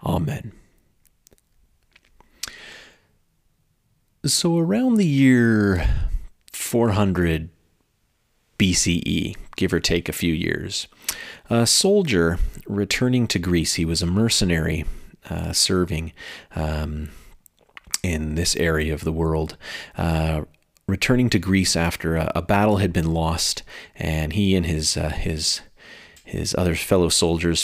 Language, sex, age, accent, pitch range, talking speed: English, male, 30-49, American, 80-110 Hz, 115 wpm